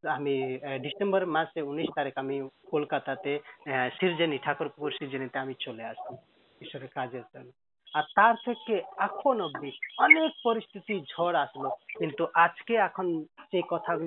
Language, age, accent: Hindi, 40-59, native